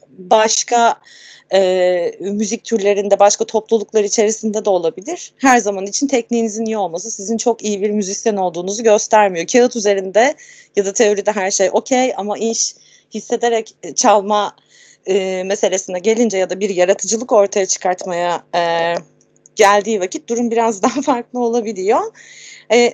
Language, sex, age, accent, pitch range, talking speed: Turkish, female, 30-49, native, 205-275 Hz, 135 wpm